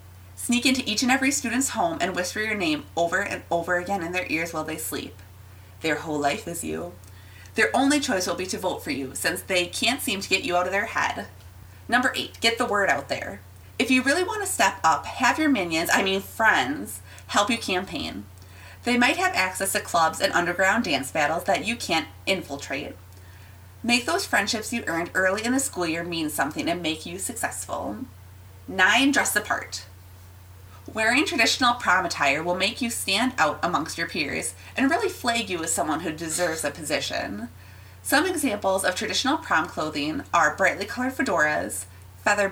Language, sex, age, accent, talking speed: English, female, 30-49, American, 190 wpm